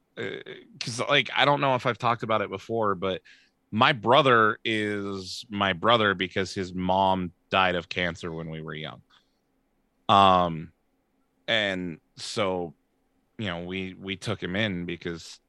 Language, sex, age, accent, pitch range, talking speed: English, male, 20-39, American, 85-105 Hz, 145 wpm